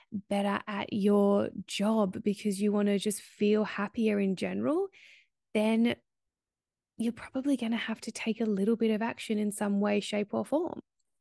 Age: 20-39